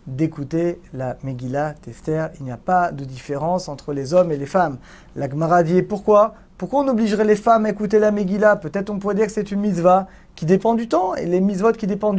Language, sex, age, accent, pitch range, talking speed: French, male, 40-59, French, 155-200 Hz, 225 wpm